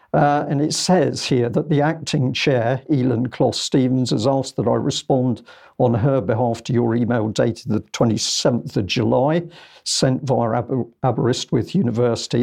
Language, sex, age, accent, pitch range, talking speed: English, male, 50-69, British, 120-145 Hz, 150 wpm